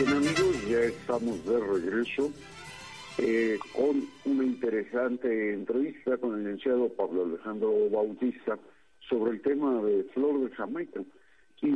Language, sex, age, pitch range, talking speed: Spanish, male, 50-69, 105-140 Hz, 130 wpm